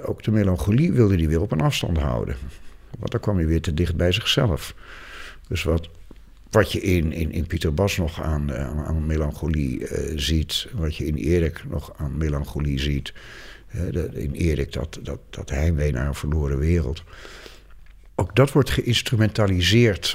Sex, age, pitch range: male, 60-79, 80-105 Hz